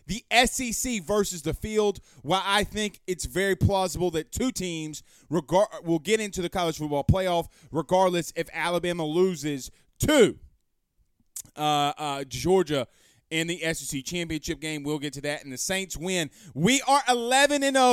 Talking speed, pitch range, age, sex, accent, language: 160 wpm, 155-225 Hz, 30-49, male, American, English